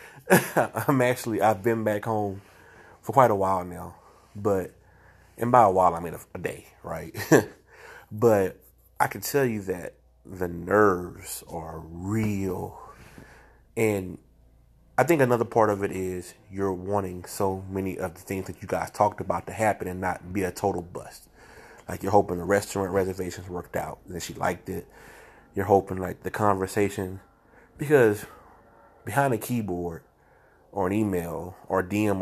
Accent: American